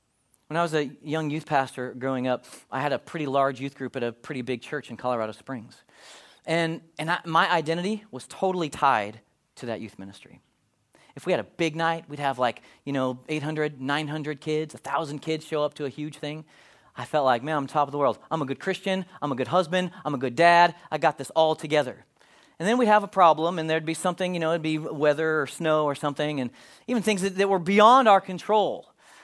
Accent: American